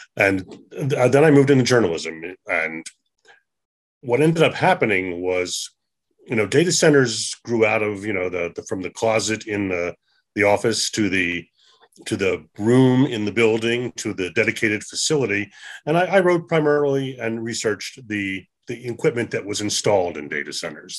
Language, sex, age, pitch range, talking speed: English, male, 30-49, 100-130 Hz, 165 wpm